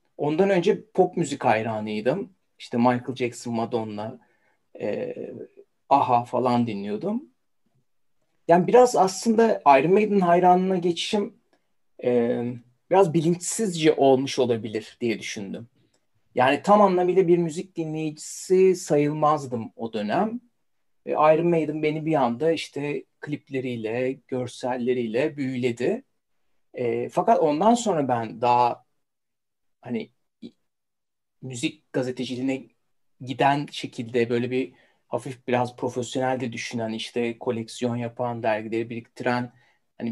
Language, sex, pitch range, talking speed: Turkish, male, 120-175 Hz, 105 wpm